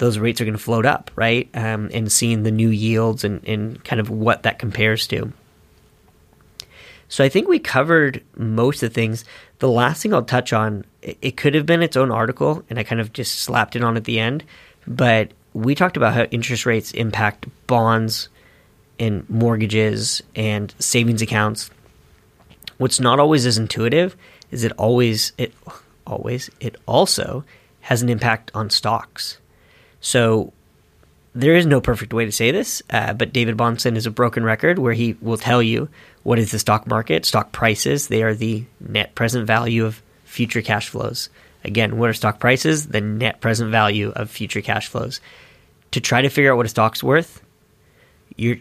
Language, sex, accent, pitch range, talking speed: English, male, American, 110-125 Hz, 180 wpm